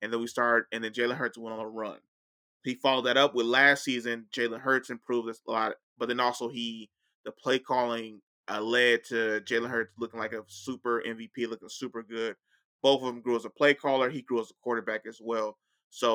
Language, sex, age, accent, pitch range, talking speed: English, male, 20-39, American, 115-135 Hz, 225 wpm